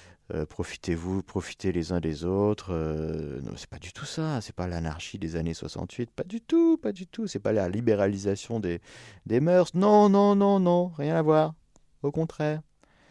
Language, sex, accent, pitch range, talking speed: French, male, French, 90-130 Hz, 190 wpm